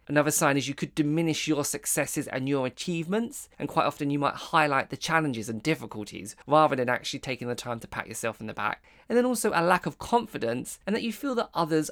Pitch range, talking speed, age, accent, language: 120-160 Hz, 230 wpm, 20-39, British, English